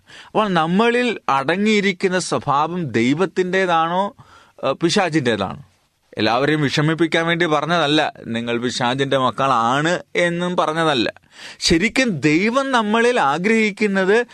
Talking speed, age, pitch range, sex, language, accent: 80 wpm, 30-49, 125-180 Hz, male, Malayalam, native